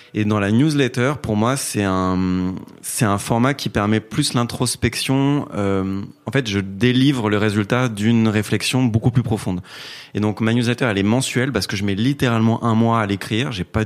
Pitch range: 100-125 Hz